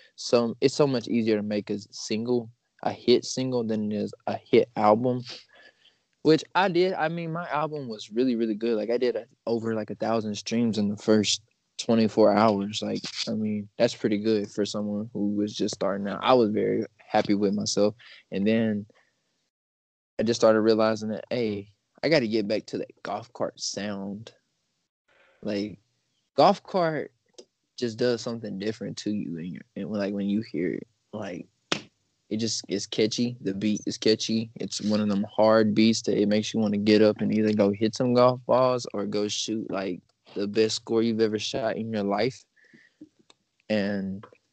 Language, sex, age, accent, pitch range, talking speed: English, male, 20-39, American, 105-115 Hz, 190 wpm